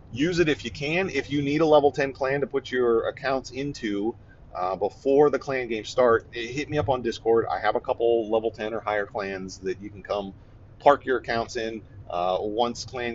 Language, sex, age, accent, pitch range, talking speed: English, male, 40-59, American, 105-145 Hz, 220 wpm